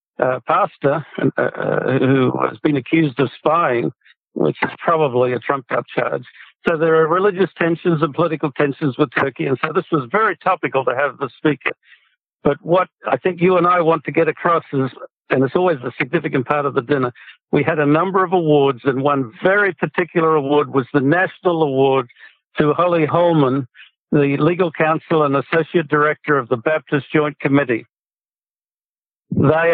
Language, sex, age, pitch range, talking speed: English, male, 60-79, 135-165 Hz, 175 wpm